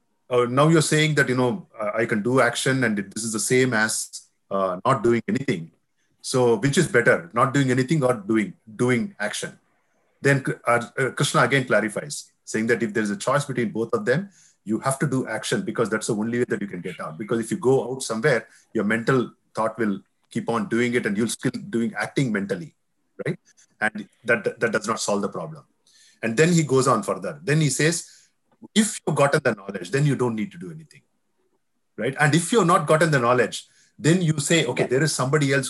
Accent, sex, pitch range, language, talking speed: Indian, male, 120-155 Hz, English, 220 wpm